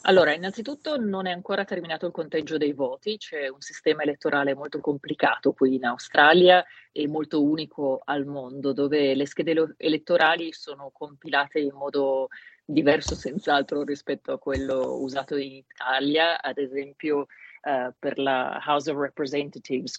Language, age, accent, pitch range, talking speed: Italian, 30-49, native, 140-175 Hz, 145 wpm